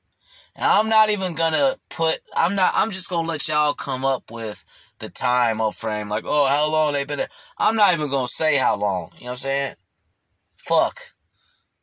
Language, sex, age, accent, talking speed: English, male, 20-39, American, 200 wpm